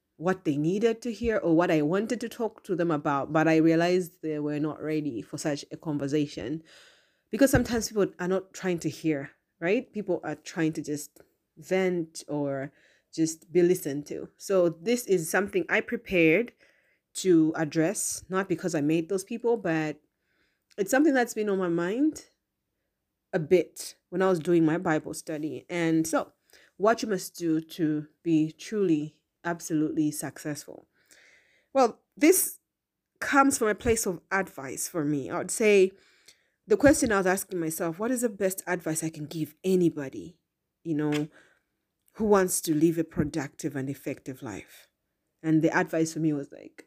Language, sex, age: English, female, 30-49